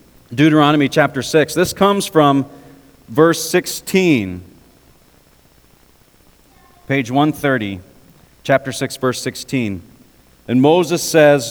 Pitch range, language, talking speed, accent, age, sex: 120-165 Hz, English, 90 wpm, American, 40-59, male